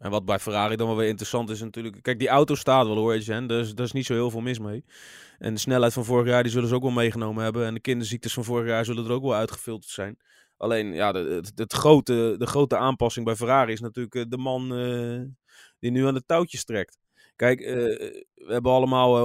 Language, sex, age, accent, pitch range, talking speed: Dutch, male, 20-39, Dutch, 115-135 Hz, 245 wpm